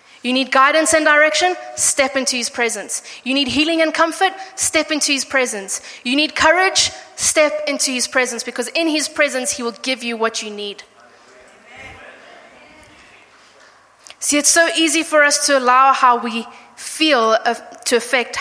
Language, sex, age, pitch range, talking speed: English, female, 20-39, 235-300 Hz, 160 wpm